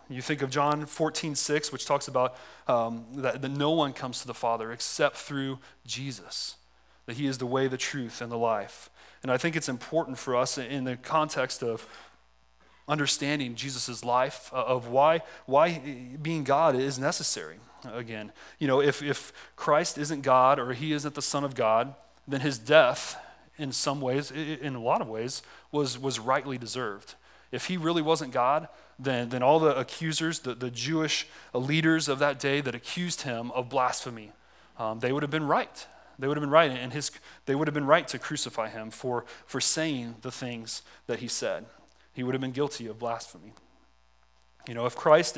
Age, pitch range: 30-49, 120-145 Hz